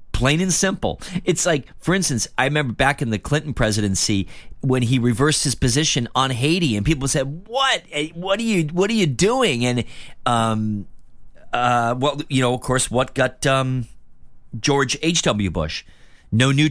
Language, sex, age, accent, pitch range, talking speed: English, male, 40-59, American, 105-150 Hz, 165 wpm